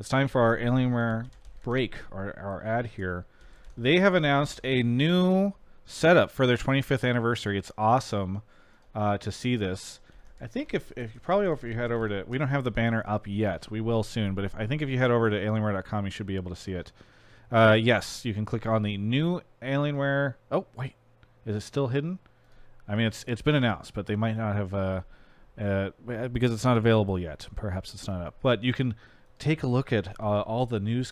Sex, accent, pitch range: male, American, 100-125 Hz